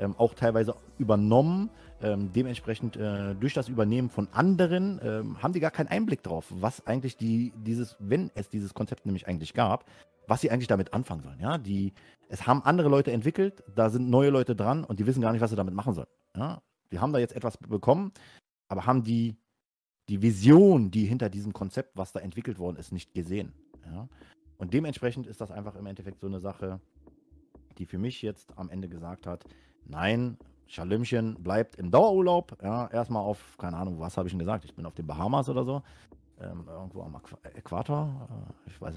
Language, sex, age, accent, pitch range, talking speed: German, male, 30-49, German, 90-120 Hz, 200 wpm